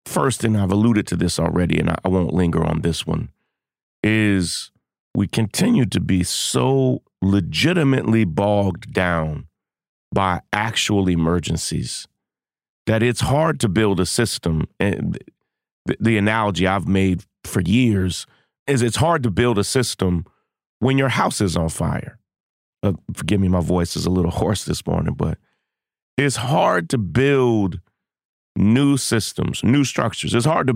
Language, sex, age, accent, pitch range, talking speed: English, male, 40-59, American, 90-125 Hz, 150 wpm